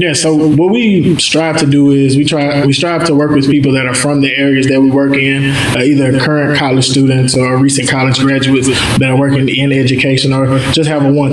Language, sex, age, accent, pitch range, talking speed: English, male, 20-39, American, 135-145 Hz, 230 wpm